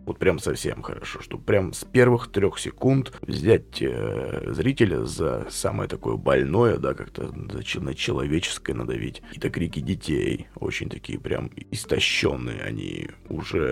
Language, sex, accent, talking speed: Russian, male, native, 140 wpm